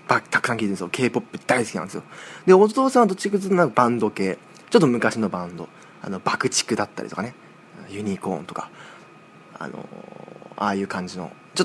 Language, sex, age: Japanese, male, 20-39